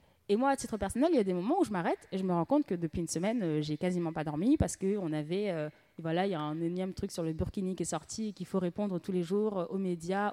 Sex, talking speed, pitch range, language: female, 320 wpm, 180-230 Hz, French